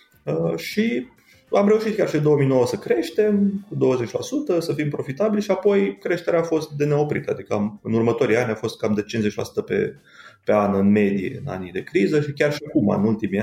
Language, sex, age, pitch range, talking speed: Romanian, male, 30-49, 105-150 Hz, 205 wpm